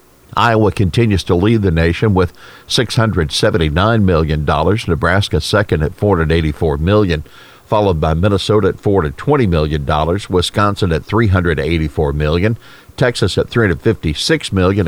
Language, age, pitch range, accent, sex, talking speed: English, 50-69, 85-115 Hz, American, male, 115 wpm